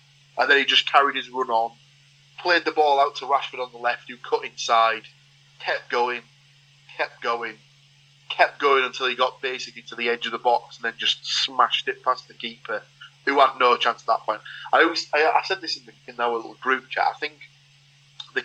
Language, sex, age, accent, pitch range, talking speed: English, male, 30-49, British, 120-140 Hz, 220 wpm